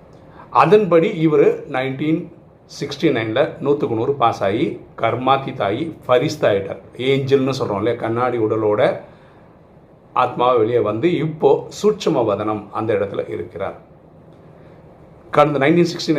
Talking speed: 90 wpm